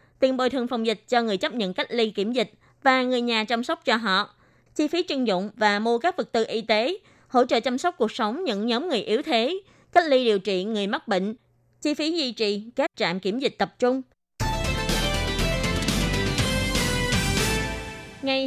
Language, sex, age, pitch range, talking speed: Vietnamese, female, 20-39, 200-265 Hz, 195 wpm